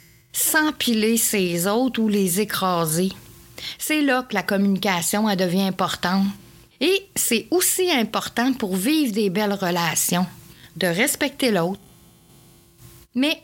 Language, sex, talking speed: French, female, 120 wpm